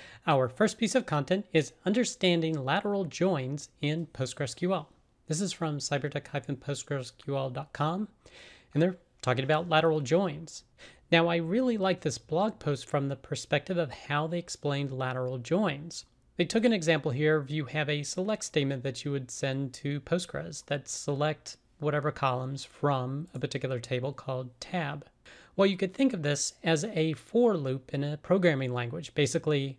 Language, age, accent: English, 40-59, American